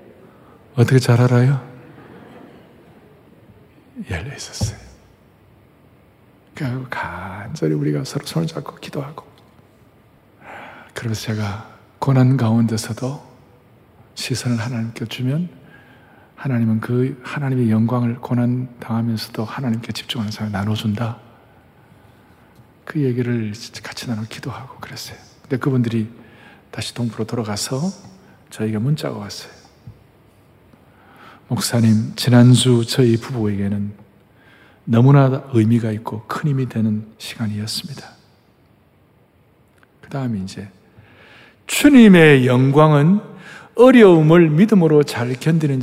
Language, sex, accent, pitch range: Korean, male, native, 110-140 Hz